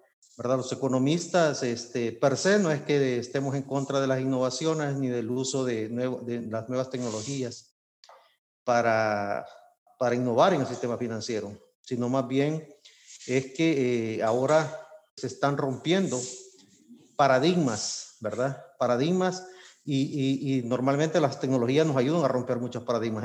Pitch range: 125-155 Hz